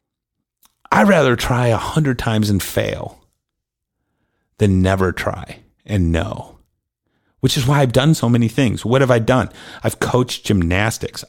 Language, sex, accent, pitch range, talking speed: English, male, American, 100-135 Hz, 150 wpm